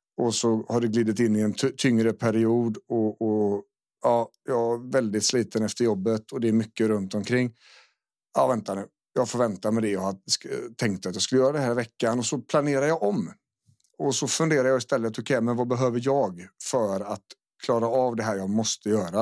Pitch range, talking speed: 110-130 Hz, 210 wpm